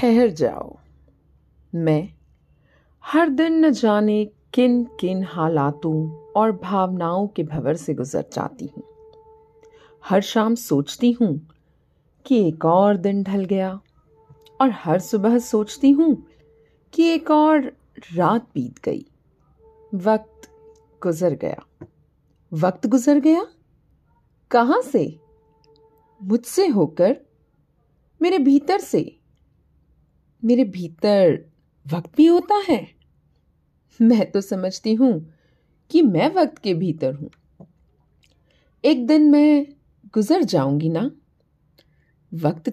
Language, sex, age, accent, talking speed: Hindi, female, 40-59, native, 105 wpm